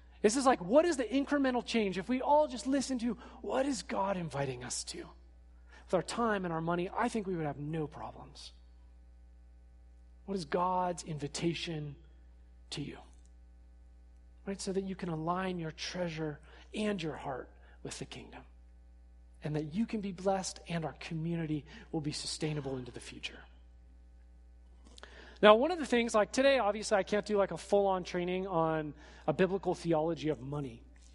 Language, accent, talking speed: English, American, 170 wpm